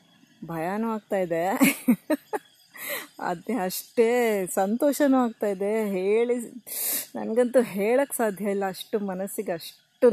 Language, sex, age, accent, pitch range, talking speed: Kannada, female, 20-39, native, 185-220 Hz, 85 wpm